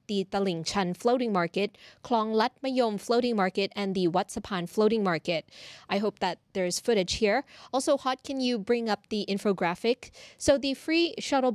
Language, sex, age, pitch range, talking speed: English, female, 20-39, 190-235 Hz, 165 wpm